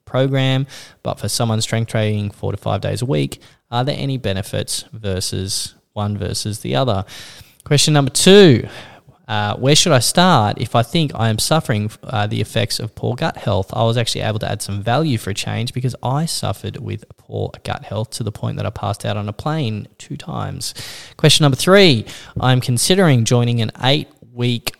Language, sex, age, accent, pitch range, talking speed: English, male, 10-29, Australian, 110-135 Hz, 195 wpm